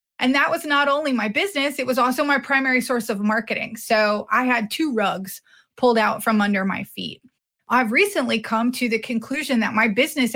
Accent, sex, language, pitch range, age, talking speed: American, female, English, 215-265 Hz, 20-39, 205 wpm